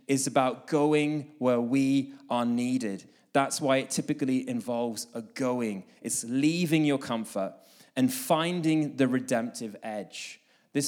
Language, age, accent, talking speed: English, 20-39, British, 130 wpm